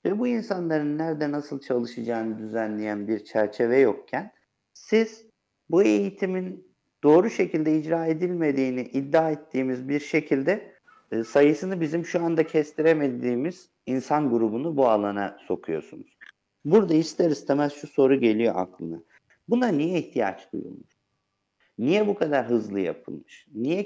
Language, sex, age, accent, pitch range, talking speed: Turkish, male, 50-69, native, 115-160 Hz, 120 wpm